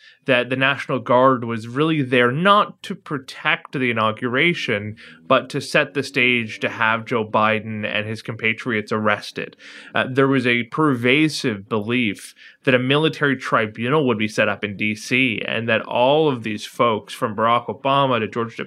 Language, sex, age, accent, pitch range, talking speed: English, male, 20-39, American, 120-155 Hz, 165 wpm